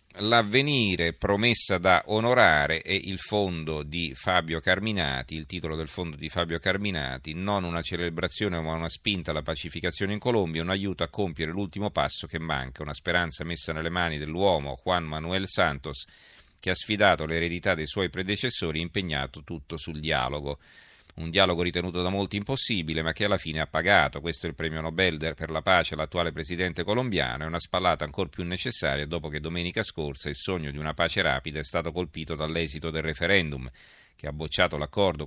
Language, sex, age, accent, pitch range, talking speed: Italian, male, 40-59, native, 80-95 Hz, 180 wpm